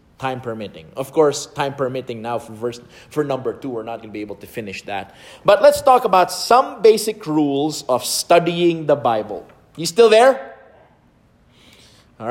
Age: 30-49